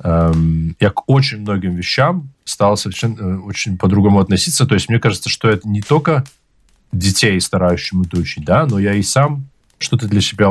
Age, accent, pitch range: 20-39, native, 85-110 Hz